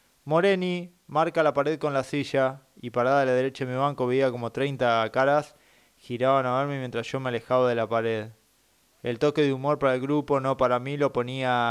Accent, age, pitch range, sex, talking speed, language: Argentinian, 20-39, 120-140 Hz, male, 210 wpm, Spanish